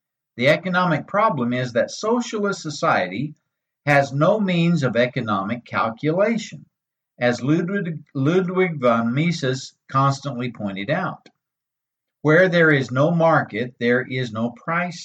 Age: 60-79